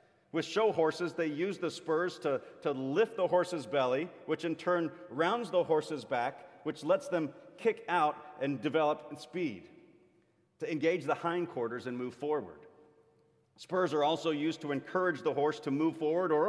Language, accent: English, American